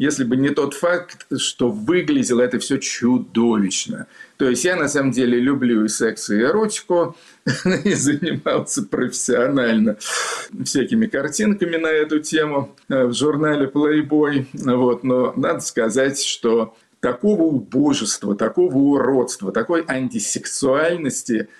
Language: Russian